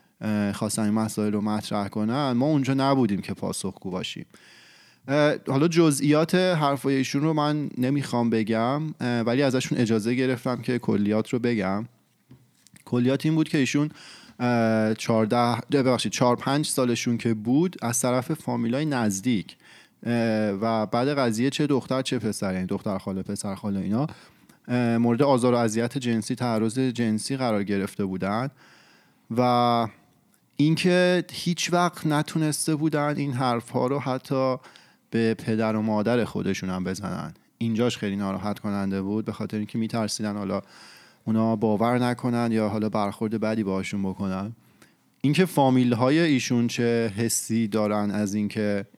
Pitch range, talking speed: 110-135 Hz, 135 wpm